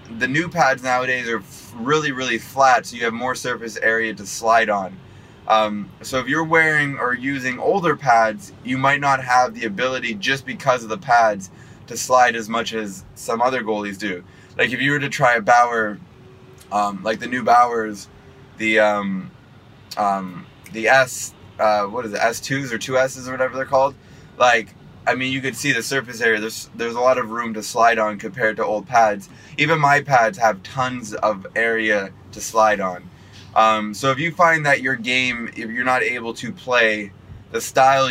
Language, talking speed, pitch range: English, 195 wpm, 110-130 Hz